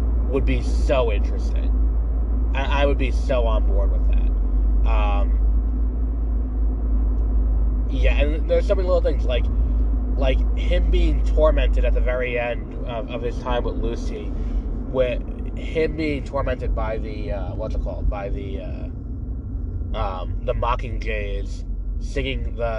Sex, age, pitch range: male, 20-39, 65-105 Hz